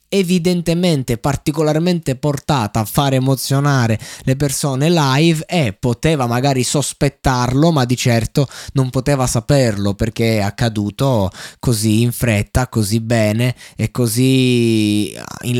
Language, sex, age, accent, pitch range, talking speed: Italian, male, 20-39, native, 115-140 Hz, 115 wpm